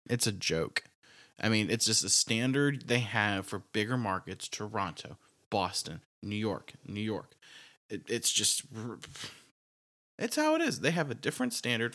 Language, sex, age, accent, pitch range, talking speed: English, male, 20-39, American, 100-130 Hz, 155 wpm